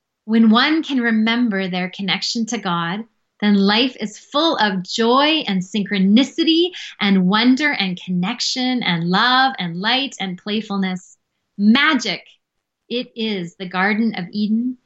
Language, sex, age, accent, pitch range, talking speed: English, female, 30-49, American, 190-240 Hz, 135 wpm